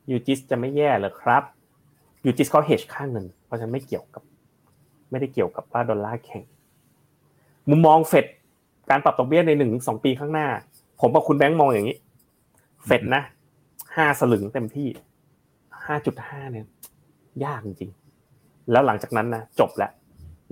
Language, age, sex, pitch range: Thai, 20-39, male, 115-150 Hz